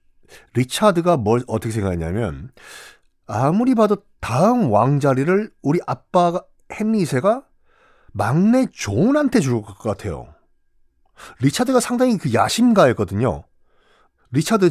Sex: male